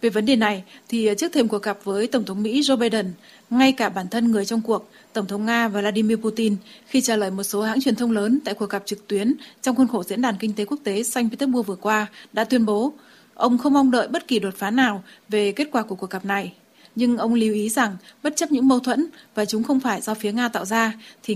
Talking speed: 265 wpm